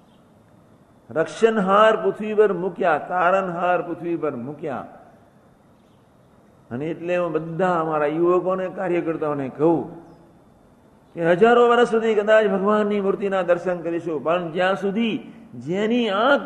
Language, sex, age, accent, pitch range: Gujarati, male, 50-69, native, 150-195 Hz